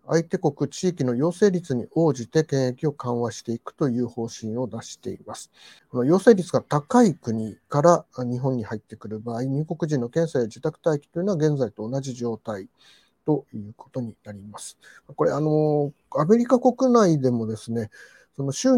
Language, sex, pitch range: Japanese, male, 120-170 Hz